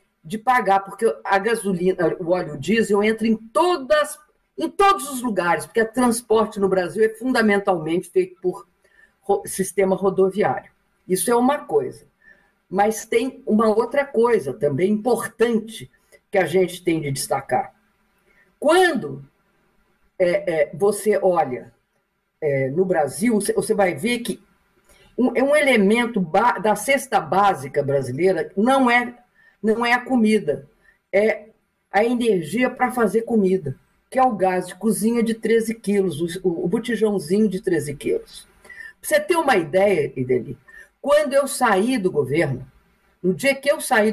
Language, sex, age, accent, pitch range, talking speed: Portuguese, female, 50-69, Brazilian, 190-235 Hz, 135 wpm